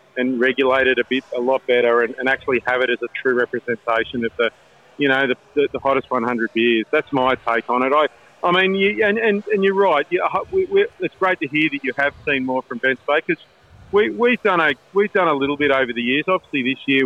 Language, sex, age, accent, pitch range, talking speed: English, male, 40-59, Australian, 125-145 Hz, 245 wpm